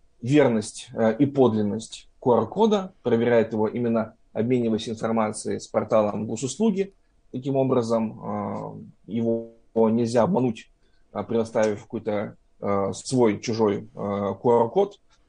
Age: 20-39